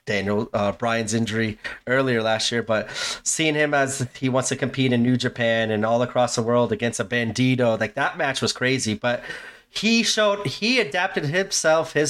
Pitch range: 120-140 Hz